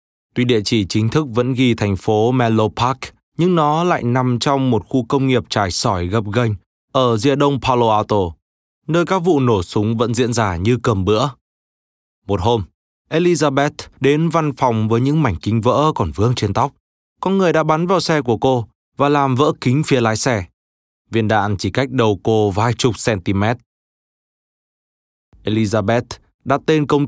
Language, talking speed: Vietnamese, 185 wpm